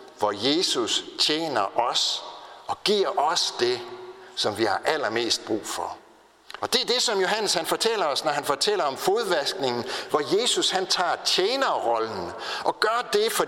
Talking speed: 165 wpm